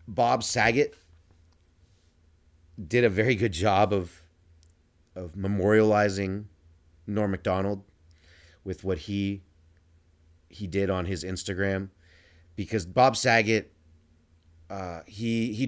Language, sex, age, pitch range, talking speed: English, male, 30-49, 85-105 Hz, 100 wpm